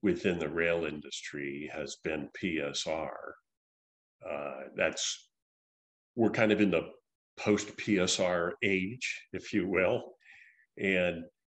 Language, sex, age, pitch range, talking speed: English, male, 50-69, 90-110 Hz, 105 wpm